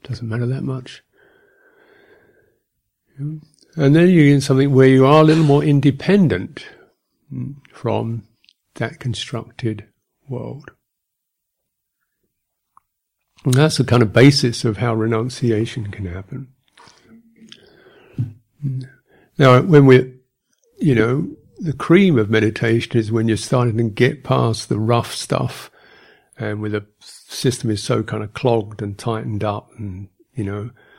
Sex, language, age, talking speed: male, English, 50-69, 125 wpm